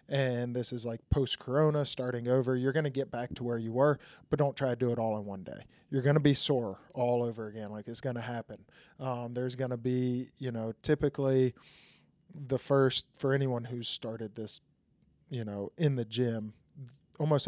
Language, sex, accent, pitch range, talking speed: English, male, American, 120-140 Hz, 205 wpm